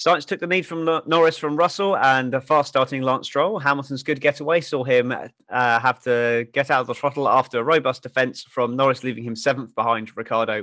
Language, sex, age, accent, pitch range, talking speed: English, male, 30-49, British, 125-155 Hz, 215 wpm